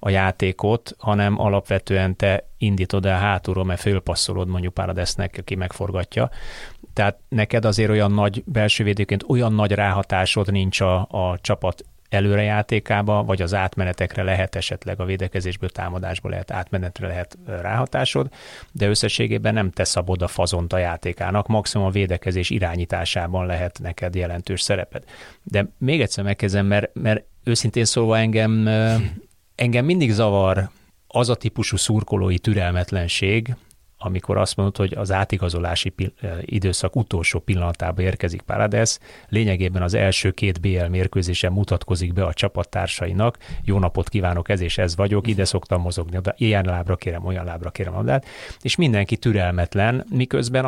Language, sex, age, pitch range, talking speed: Hungarian, male, 30-49, 90-110 Hz, 135 wpm